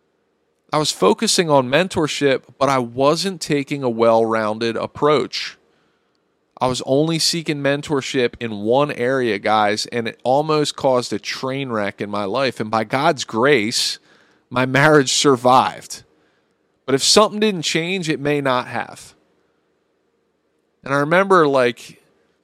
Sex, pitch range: male, 115-150 Hz